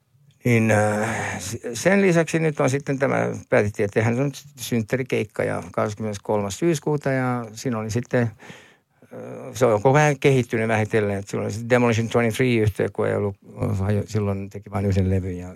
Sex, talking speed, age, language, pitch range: male, 125 wpm, 60-79, Finnish, 95-115 Hz